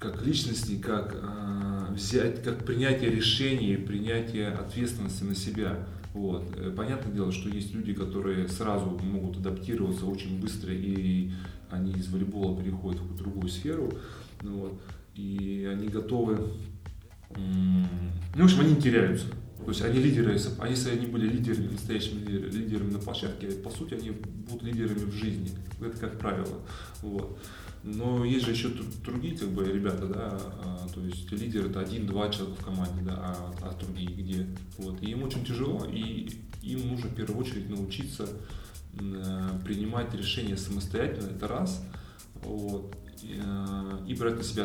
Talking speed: 150 wpm